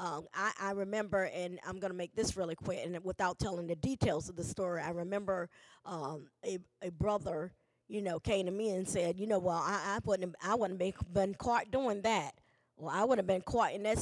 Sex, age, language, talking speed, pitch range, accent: female, 20-39, English, 230 wpm, 185-240 Hz, American